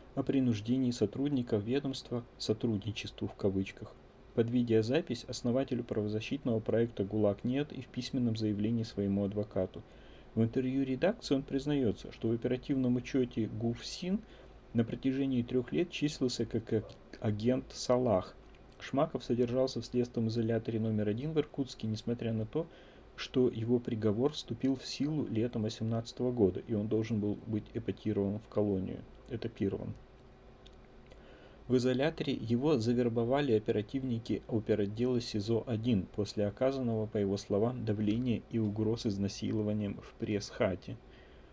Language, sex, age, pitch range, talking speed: Russian, male, 30-49, 105-125 Hz, 125 wpm